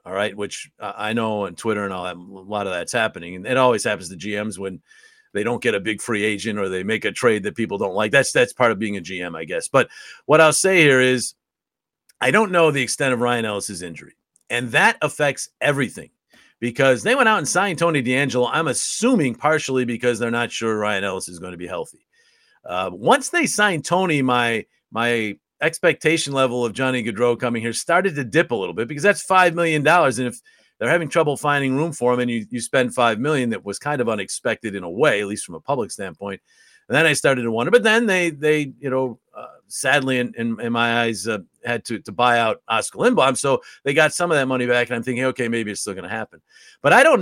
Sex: male